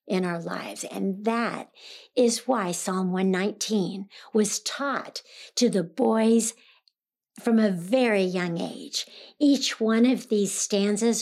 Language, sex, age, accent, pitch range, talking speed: English, female, 60-79, American, 190-235 Hz, 130 wpm